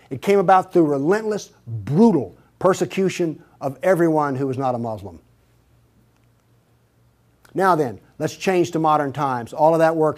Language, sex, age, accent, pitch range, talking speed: English, male, 50-69, American, 135-185 Hz, 145 wpm